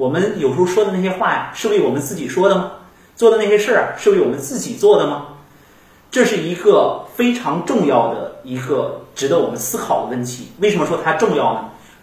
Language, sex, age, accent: Chinese, male, 30-49, native